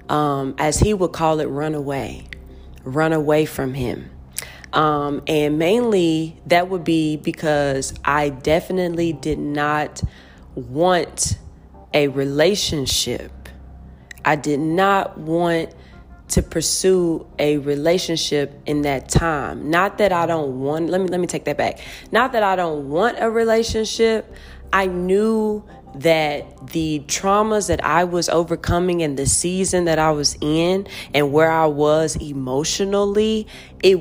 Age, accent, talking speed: 20-39, American, 140 wpm